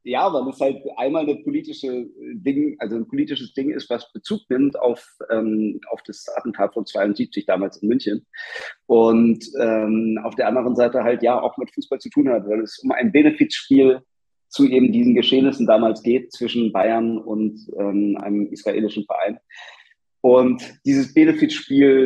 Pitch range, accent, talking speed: 110-140 Hz, German, 165 wpm